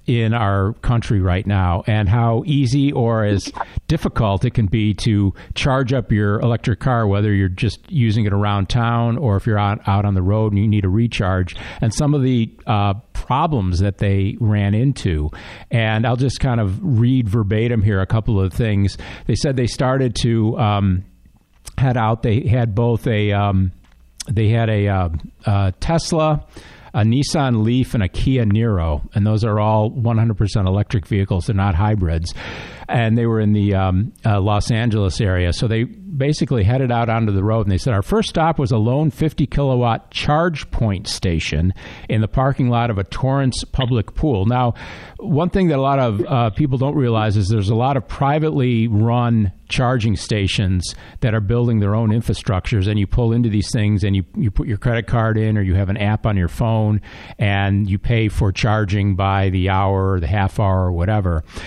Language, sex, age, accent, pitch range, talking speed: English, male, 50-69, American, 100-120 Hz, 195 wpm